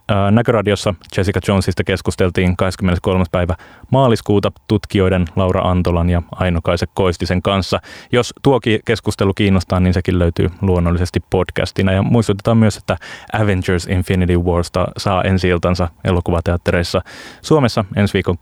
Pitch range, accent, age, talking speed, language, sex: 90-105 Hz, native, 20-39, 125 wpm, Finnish, male